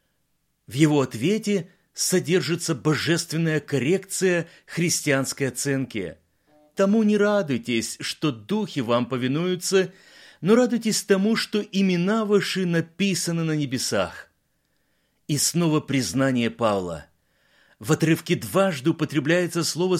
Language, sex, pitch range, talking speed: Russian, male, 150-195 Hz, 100 wpm